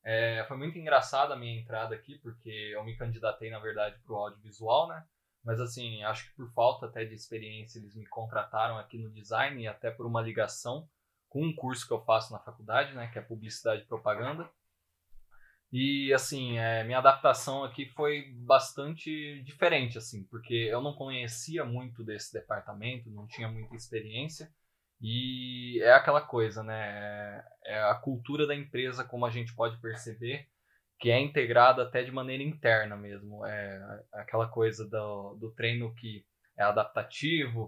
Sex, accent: male, Brazilian